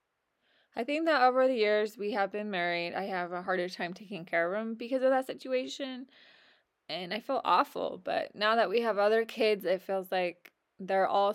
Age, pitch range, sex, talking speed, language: 20-39, 185-230 Hz, female, 205 wpm, English